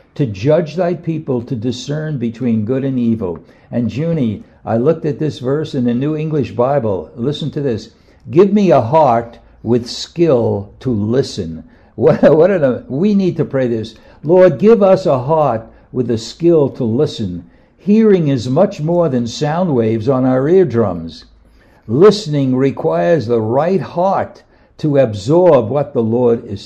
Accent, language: American, English